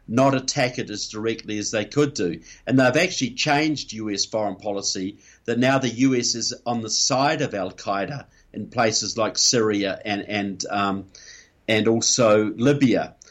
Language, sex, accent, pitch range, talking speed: English, male, Australian, 110-135 Hz, 160 wpm